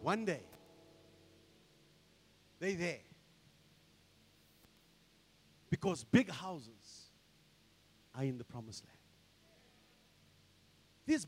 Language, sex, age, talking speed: English, male, 50-69, 70 wpm